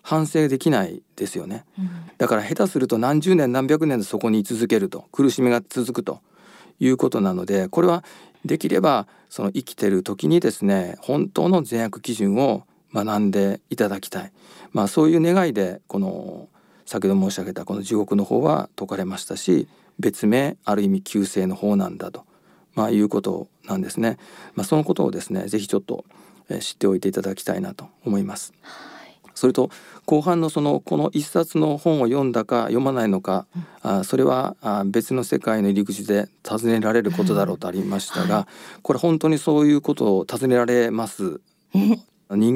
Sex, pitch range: male, 105-155 Hz